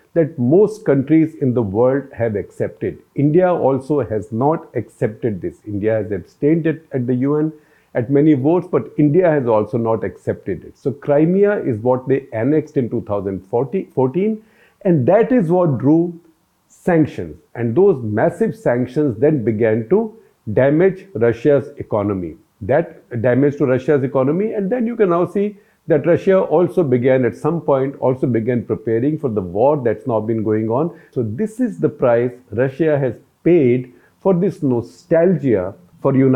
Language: English